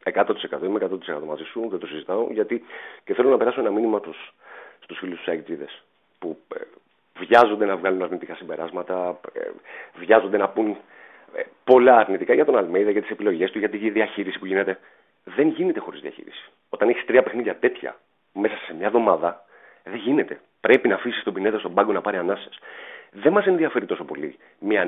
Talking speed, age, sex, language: 185 wpm, 40-59, male, Greek